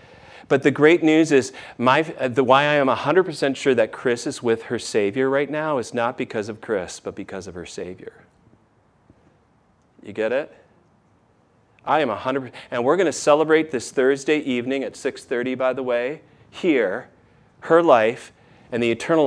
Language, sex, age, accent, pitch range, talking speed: English, male, 40-59, American, 125-165 Hz, 170 wpm